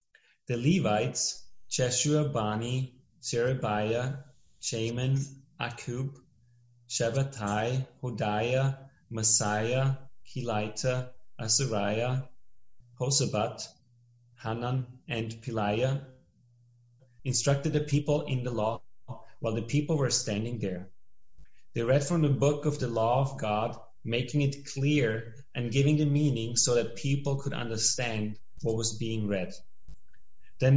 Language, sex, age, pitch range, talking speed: English, male, 30-49, 115-140 Hz, 105 wpm